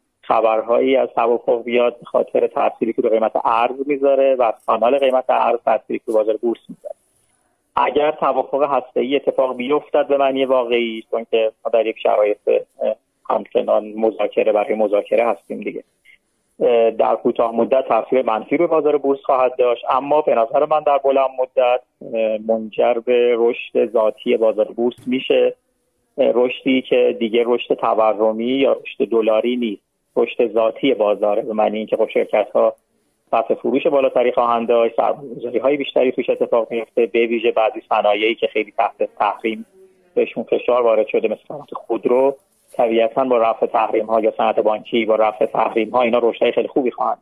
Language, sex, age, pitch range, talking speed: Persian, male, 40-59, 115-140 Hz, 155 wpm